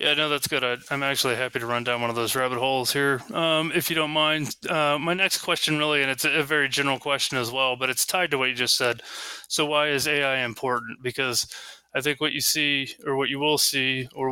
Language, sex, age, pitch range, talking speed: English, male, 20-39, 125-145 Hz, 255 wpm